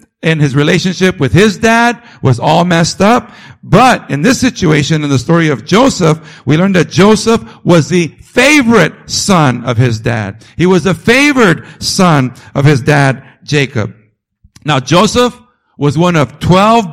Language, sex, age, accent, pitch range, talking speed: English, male, 50-69, American, 130-190 Hz, 160 wpm